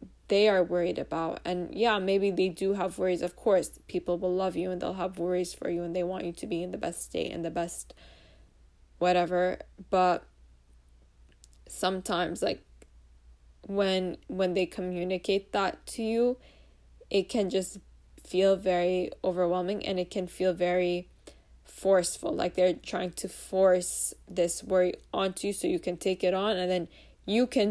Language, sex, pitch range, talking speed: English, female, 175-195 Hz, 170 wpm